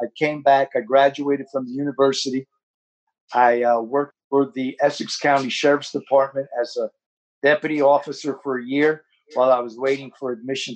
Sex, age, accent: male, 50-69, American